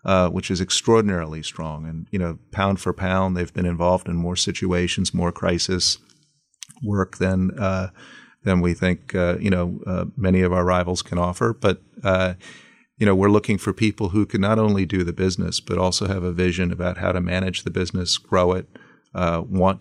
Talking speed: 195 wpm